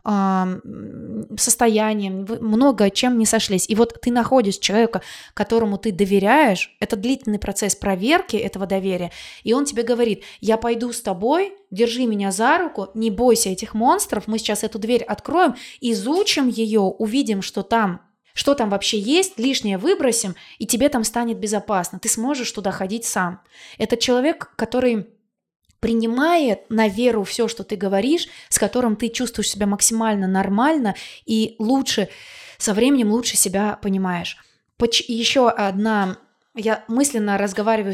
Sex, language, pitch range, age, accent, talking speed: female, Russian, 205-240 Hz, 20-39, native, 140 wpm